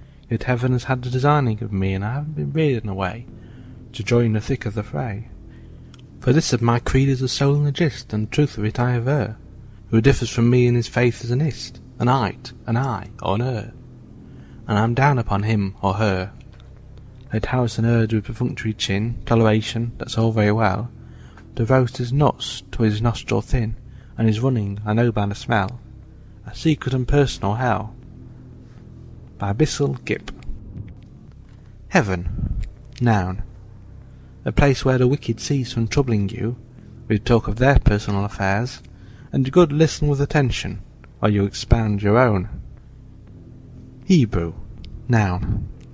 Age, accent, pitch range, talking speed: 30-49, British, 105-125 Hz, 170 wpm